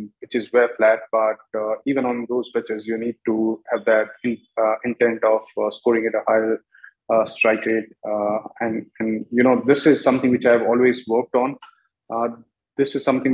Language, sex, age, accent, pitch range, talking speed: English, male, 20-39, Indian, 110-125 Hz, 200 wpm